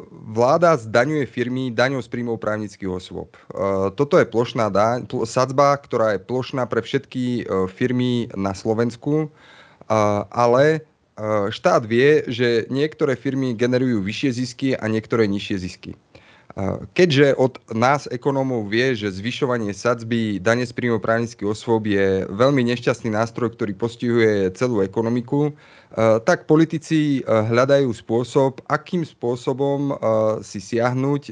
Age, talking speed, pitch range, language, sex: 30-49, 120 wpm, 105-135 Hz, Slovak, male